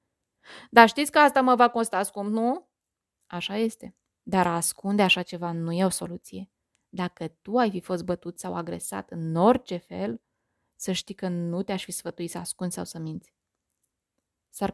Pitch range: 175-220 Hz